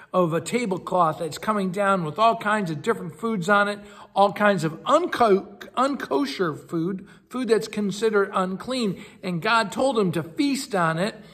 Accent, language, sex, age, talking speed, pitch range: American, English, male, 60-79, 165 wpm, 160-210 Hz